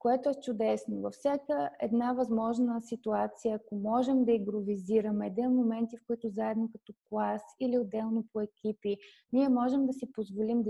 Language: Bulgarian